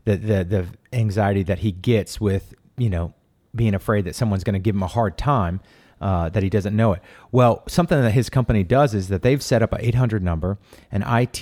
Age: 30-49